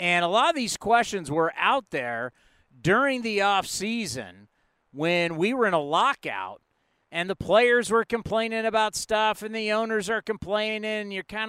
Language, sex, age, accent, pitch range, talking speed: English, male, 40-59, American, 160-220 Hz, 165 wpm